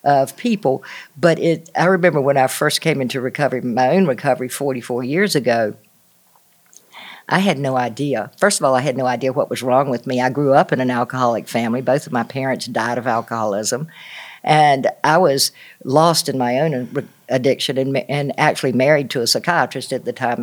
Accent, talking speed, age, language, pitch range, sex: American, 195 wpm, 50-69, English, 125-155 Hz, female